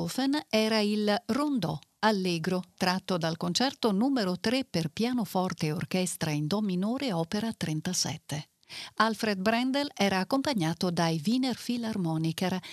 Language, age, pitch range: Italian, 50-69, 170-235 Hz